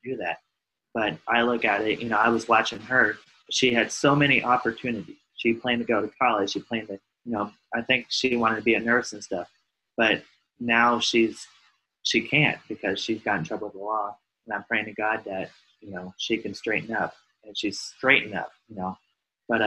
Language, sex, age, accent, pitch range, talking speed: English, male, 20-39, American, 100-115 Hz, 215 wpm